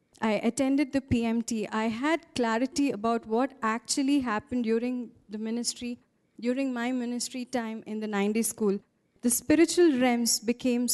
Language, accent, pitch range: English, Indian, 225-270 Hz